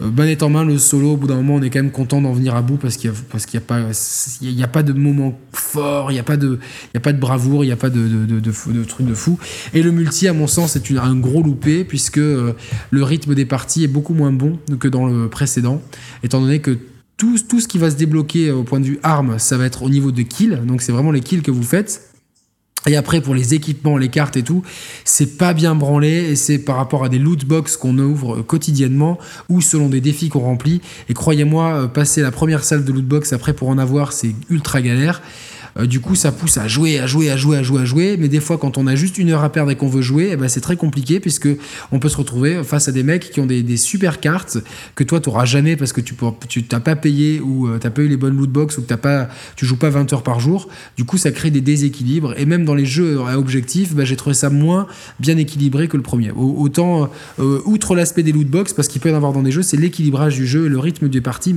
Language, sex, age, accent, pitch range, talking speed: French, male, 20-39, French, 130-155 Hz, 275 wpm